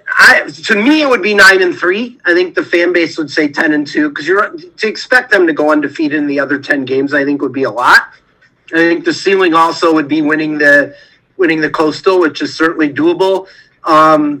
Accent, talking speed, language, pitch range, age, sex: American, 230 wpm, English, 145-190 Hz, 40-59, male